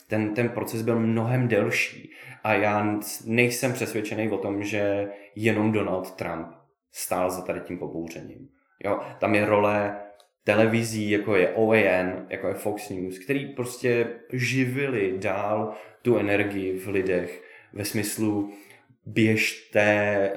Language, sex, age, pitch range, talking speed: Czech, male, 20-39, 100-115 Hz, 125 wpm